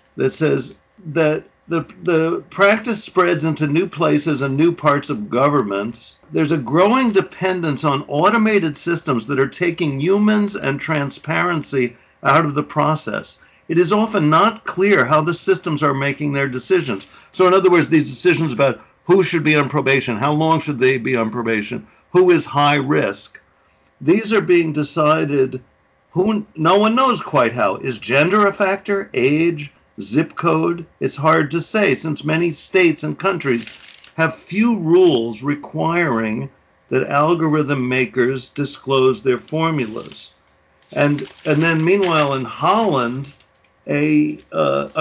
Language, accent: English, American